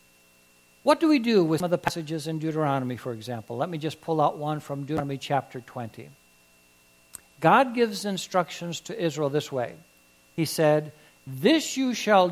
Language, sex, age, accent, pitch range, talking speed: English, male, 60-79, American, 110-185 Hz, 170 wpm